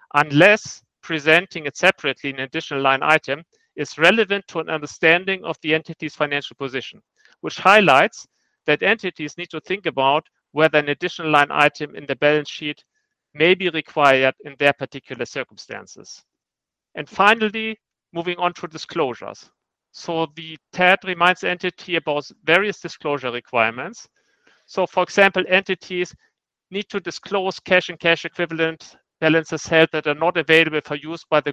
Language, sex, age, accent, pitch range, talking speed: English, male, 50-69, German, 145-180 Hz, 145 wpm